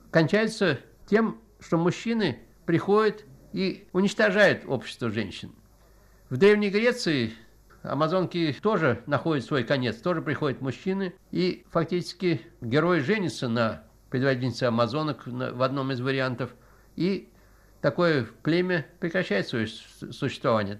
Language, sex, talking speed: Russian, male, 105 wpm